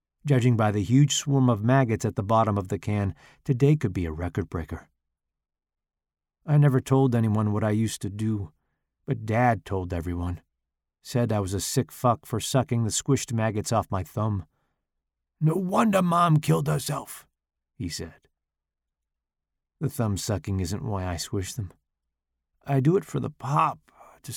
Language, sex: English, male